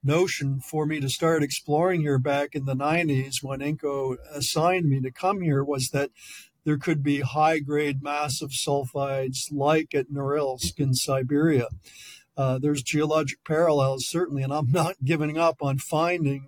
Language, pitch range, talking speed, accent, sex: English, 135-155 Hz, 155 wpm, American, male